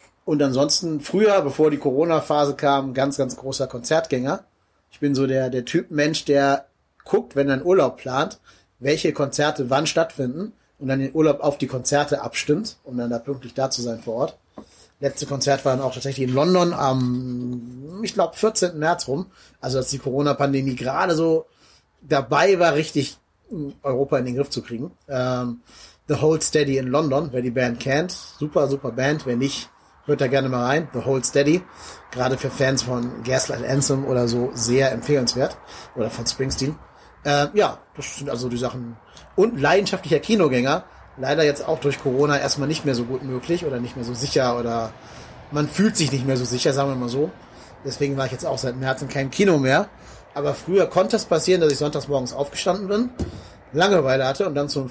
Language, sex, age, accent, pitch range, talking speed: German, male, 30-49, German, 130-150 Hz, 195 wpm